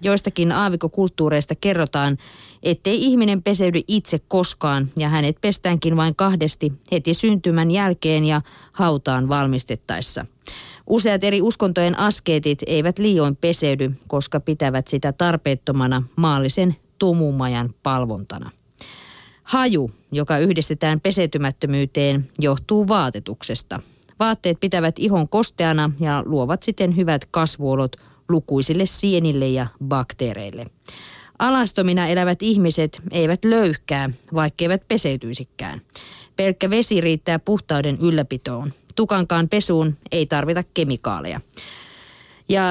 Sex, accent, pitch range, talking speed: female, native, 140-185 Hz, 100 wpm